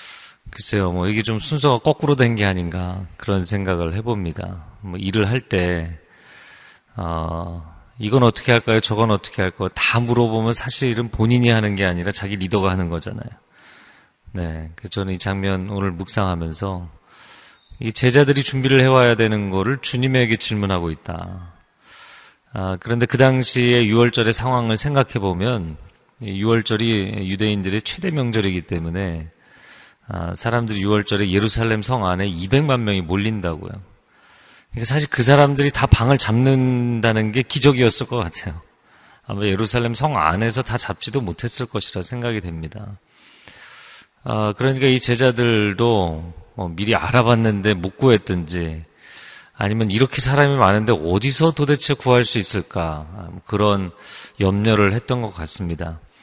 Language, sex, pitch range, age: Korean, male, 95-120 Hz, 40-59